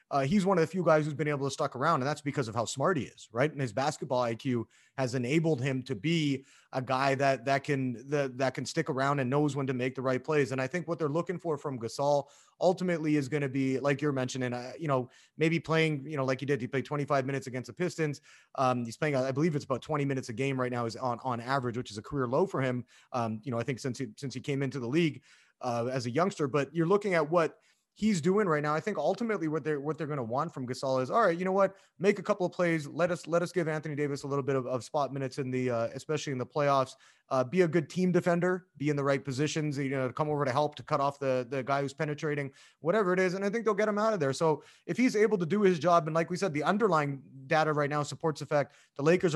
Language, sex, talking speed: English, male, 285 wpm